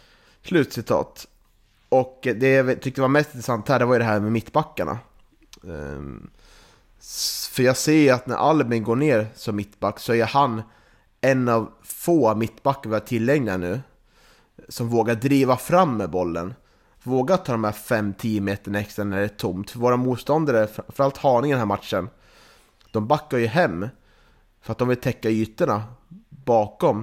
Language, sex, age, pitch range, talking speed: Swedish, male, 30-49, 105-130 Hz, 170 wpm